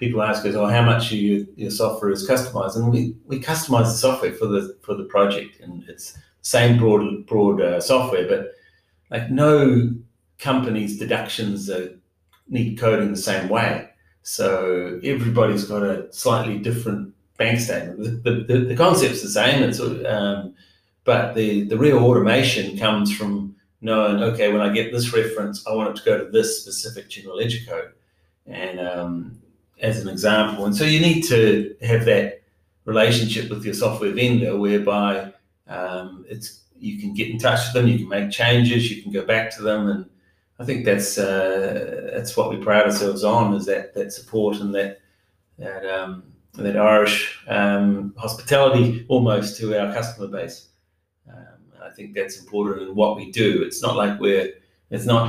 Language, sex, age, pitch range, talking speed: English, male, 40-59, 100-120 Hz, 175 wpm